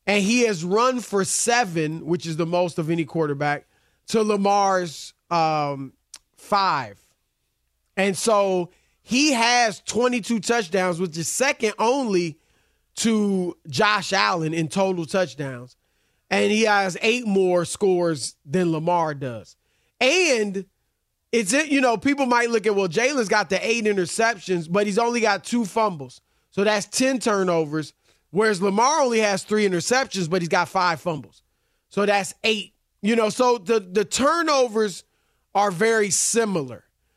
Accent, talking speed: American, 145 wpm